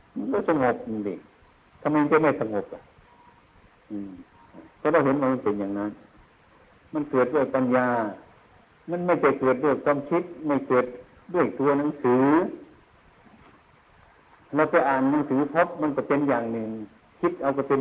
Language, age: Thai, 60-79